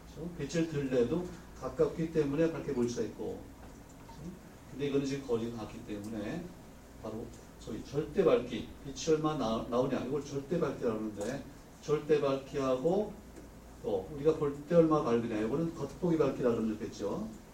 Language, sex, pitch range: Korean, male, 115-155 Hz